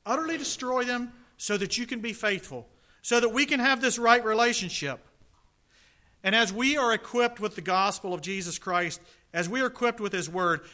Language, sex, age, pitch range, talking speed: English, male, 40-59, 150-220 Hz, 195 wpm